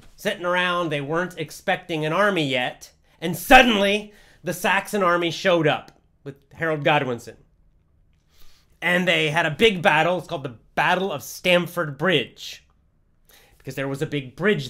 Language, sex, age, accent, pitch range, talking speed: English, male, 30-49, American, 150-200 Hz, 150 wpm